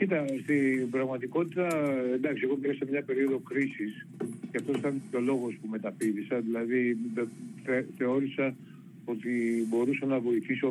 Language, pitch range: Greek, 115-145 Hz